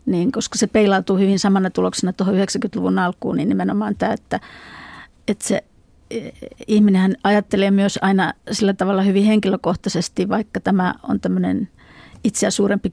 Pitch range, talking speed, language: 190-215 Hz, 140 wpm, Finnish